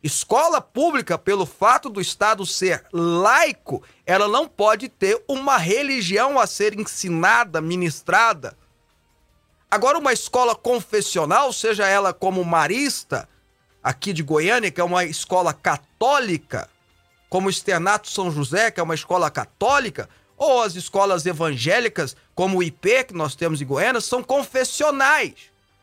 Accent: Brazilian